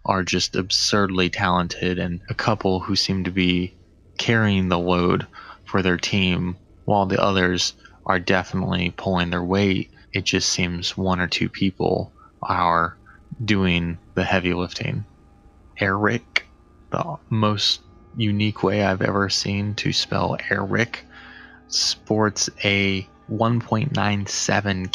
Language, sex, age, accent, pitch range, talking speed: English, male, 20-39, American, 90-100 Hz, 125 wpm